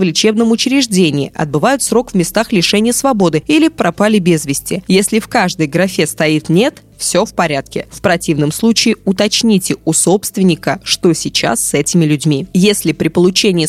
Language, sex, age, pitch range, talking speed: Russian, female, 20-39, 165-220 Hz, 160 wpm